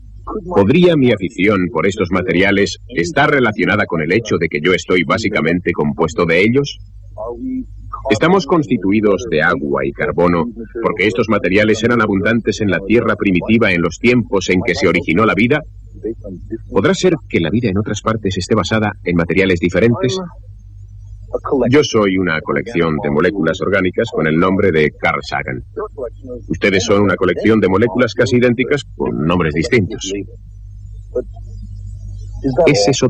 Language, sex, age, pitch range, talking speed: Spanish, male, 30-49, 95-115 Hz, 150 wpm